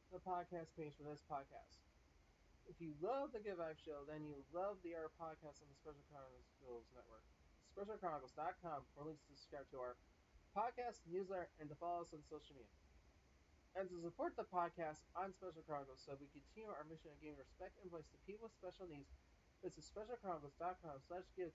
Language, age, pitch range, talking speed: English, 30-49, 135-170 Hz, 185 wpm